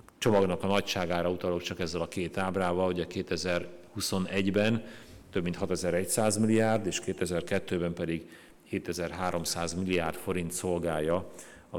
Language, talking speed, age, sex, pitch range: Hungarian, 115 wpm, 50-69, male, 80-95 Hz